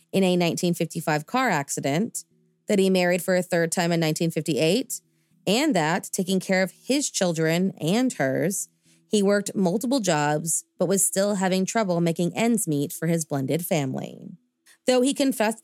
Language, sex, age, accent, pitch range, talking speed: English, female, 30-49, American, 165-215 Hz, 160 wpm